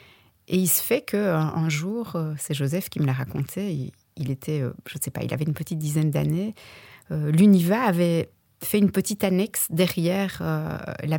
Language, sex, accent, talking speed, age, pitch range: French, female, French, 190 wpm, 30-49, 150-185 Hz